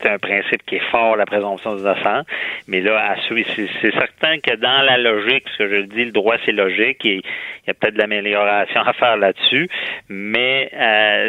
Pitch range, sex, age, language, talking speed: 100-120 Hz, male, 40-59, French, 205 wpm